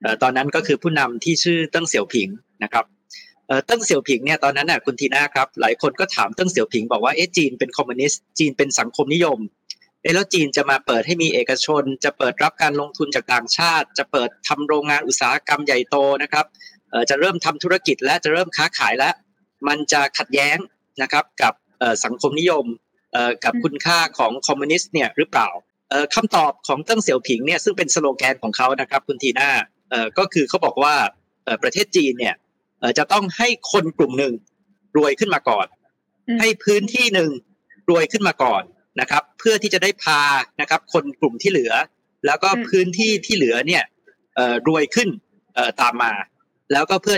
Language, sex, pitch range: Thai, male, 140-195 Hz